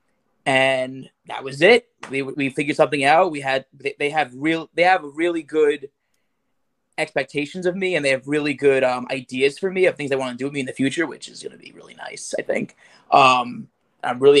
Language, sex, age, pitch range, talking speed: English, male, 20-39, 135-175 Hz, 225 wpm